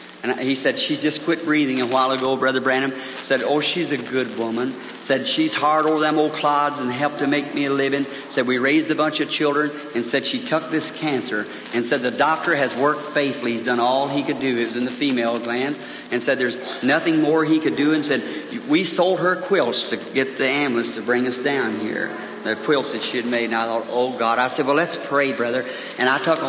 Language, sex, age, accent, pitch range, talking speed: English, male, 50-69, American, 130-155 Hz, 245 wpm